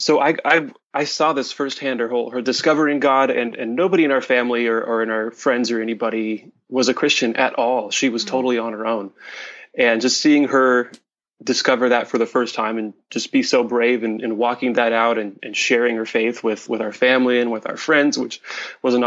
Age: 20-39